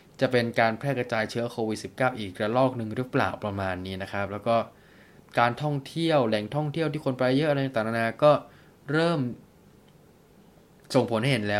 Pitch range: 110-140 Hz